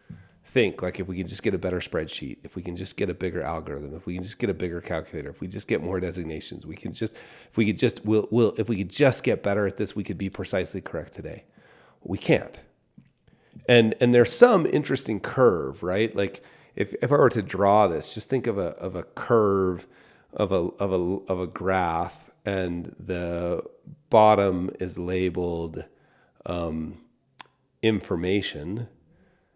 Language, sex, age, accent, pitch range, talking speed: English, male, 40-59, American, 90-110 Hz, 190 wpm